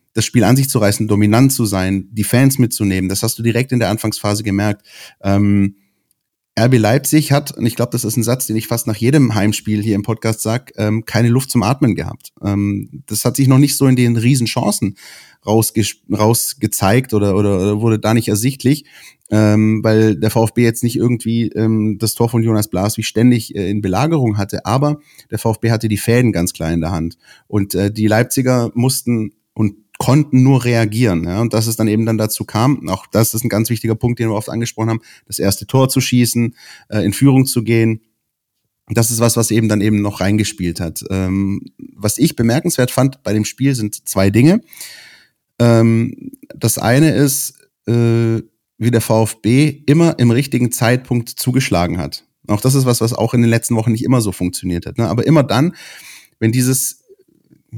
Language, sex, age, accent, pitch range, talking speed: German, male, 30-49, German, 105-125 Hz, 190 wpm